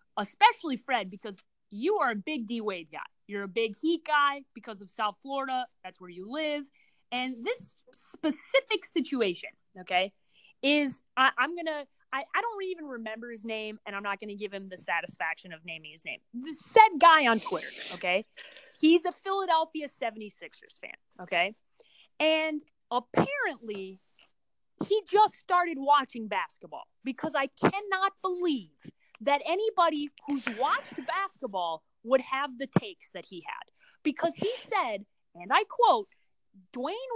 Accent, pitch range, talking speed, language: American, 225-350 Hz, 150 wpm, English